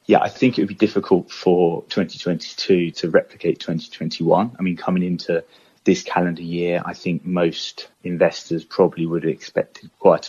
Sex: male